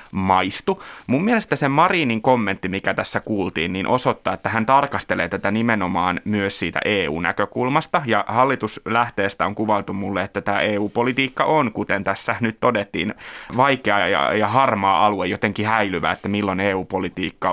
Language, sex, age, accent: Finnish, male, 30-49, native